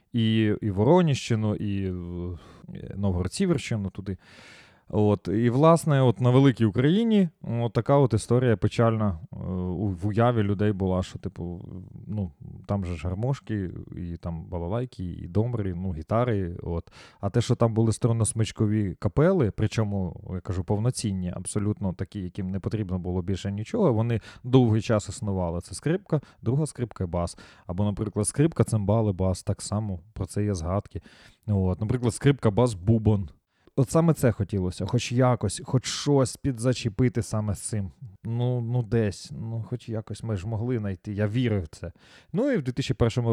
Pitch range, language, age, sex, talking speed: 100-125 Hz, Ukrainian, 20-39, male, 160 wpm